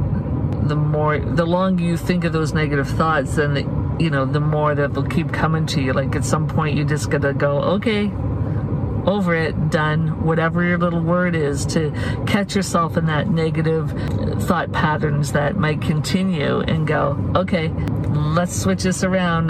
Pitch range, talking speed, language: 135-155 Hz, 175 wpm, English